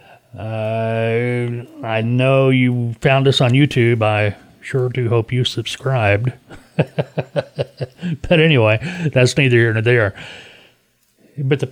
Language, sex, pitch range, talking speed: English, male, 115-150 Hz, 120 wpm